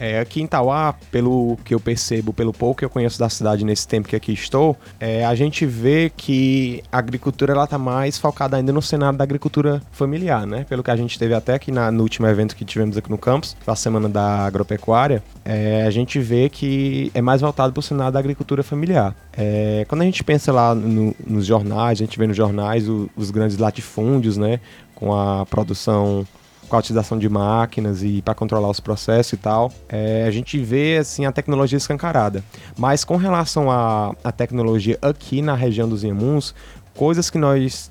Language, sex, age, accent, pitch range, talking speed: Portuguese, male, 20-39, Brazilian, 110-140 Hz, 200 wpm